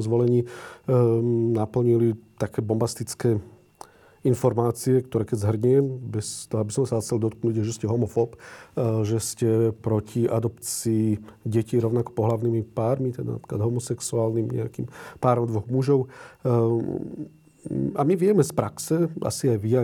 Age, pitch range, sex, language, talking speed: 40-59, 110-125 Hz, male, Slovak, 135 wpm